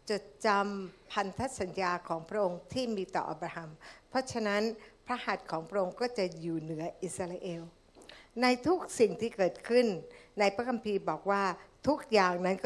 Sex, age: female, 60-79